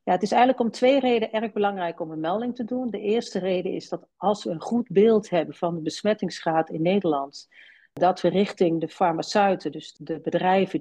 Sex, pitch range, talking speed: female, 160-205 Hz, 205 wpm